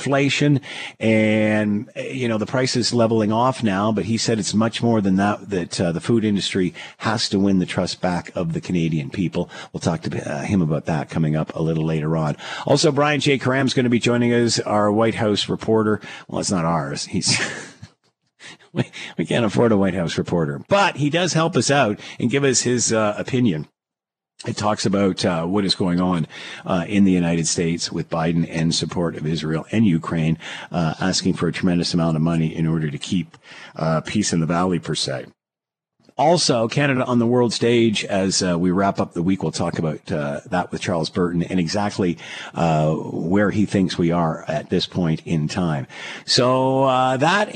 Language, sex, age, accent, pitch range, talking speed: English, male, 50-69, American, 85-125 Hz, 205 wpm